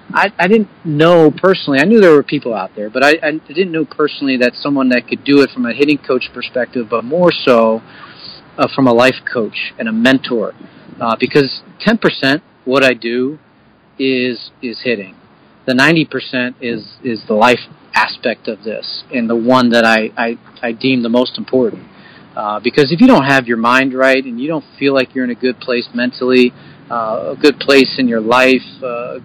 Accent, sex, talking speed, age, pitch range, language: American, male, 200 wpm, 40-59, 120-145 Hz, English